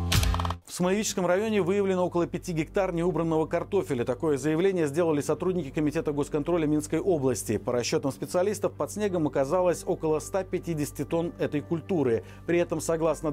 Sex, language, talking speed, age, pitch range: male, Russian, 140 wpm, 40-59, 135-180 Hz